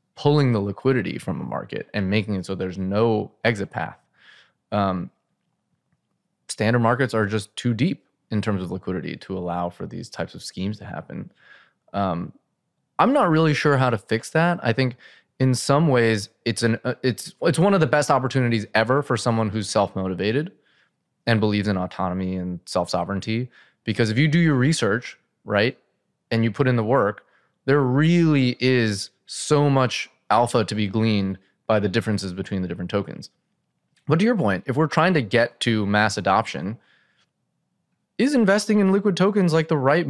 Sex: male